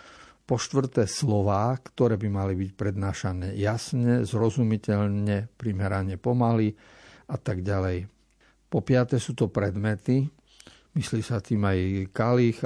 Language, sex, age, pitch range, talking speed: Slovak, male, 50-69, 100-125 Hz, 120 wpm